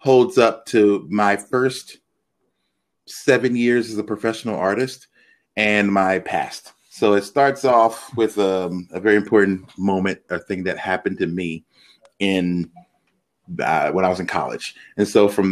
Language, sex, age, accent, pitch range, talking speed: English, male, 30-49, American, 95-120 Hz, 155 wpm